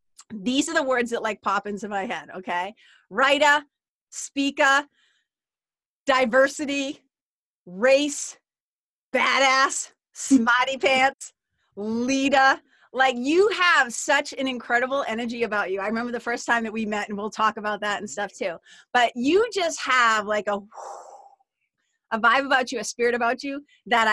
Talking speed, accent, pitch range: 145 wpm, American, 215-275 Hz